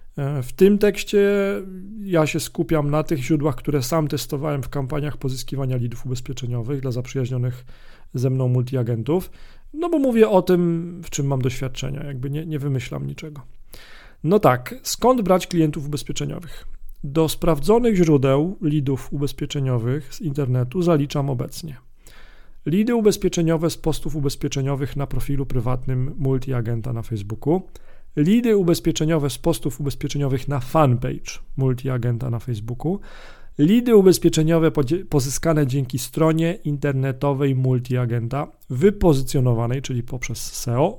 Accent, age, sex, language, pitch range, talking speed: native, 40-59, male, Polish, 130-165 Hz, 120 wpm